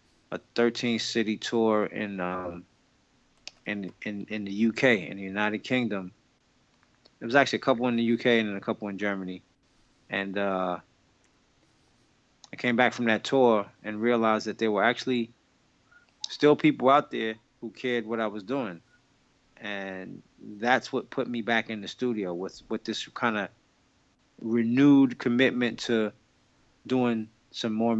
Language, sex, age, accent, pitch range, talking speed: English, male, 20-39, American, 110-125 Hz, 150 wpm